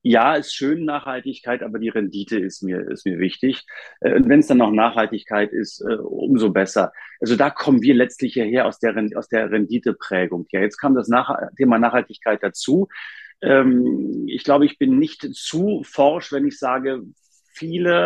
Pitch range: 125-200 Hz